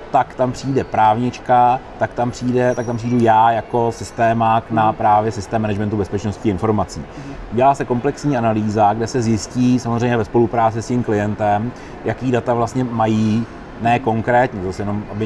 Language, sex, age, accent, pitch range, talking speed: Czech, male, 30-49, native, 110-135 Hz, 155 wpm